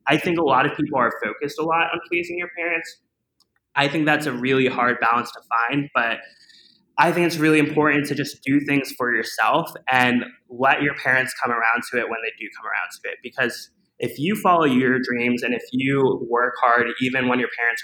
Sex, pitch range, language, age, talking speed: male, 115-150 Hz, English, 20-39, 220 wpm